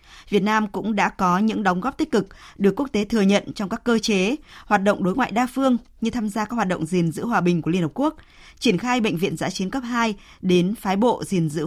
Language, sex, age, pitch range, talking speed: Vietnamese, female, 20-39, 180-225 Hz, 265 wpm